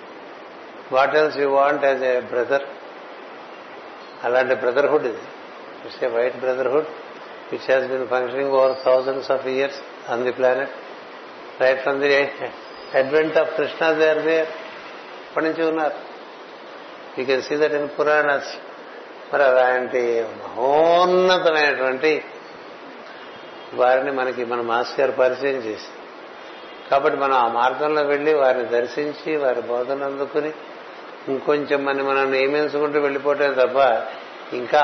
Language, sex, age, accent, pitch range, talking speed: Telugu, male, 60-79, native, 130-155 Hz, 145 wpm